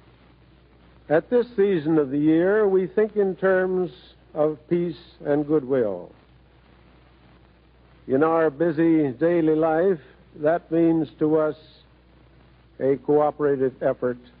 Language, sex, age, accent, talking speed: English, male, 60-79, American, 110 wpm